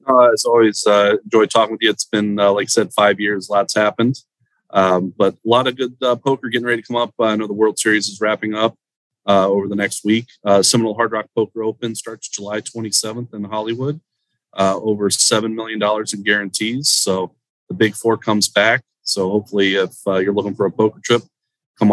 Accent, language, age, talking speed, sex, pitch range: American, English, 30-49, 215 wpm, male, 100-120 Hz